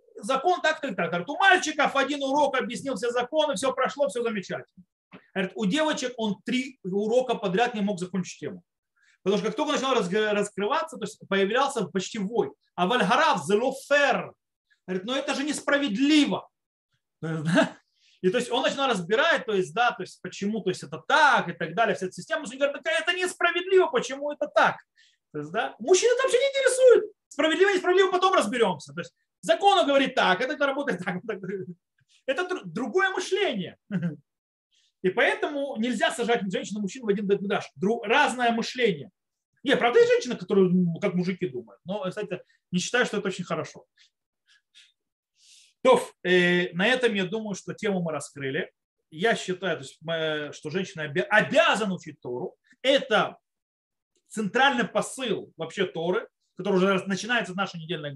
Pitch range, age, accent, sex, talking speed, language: 185-285 Hz, 30-49, native, male, 155 wpm, Russian